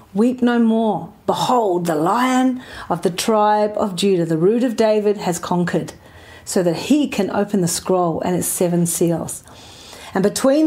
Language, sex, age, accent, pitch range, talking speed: English, female, 40-59, Australian, 180-235 Hz, 170 wpm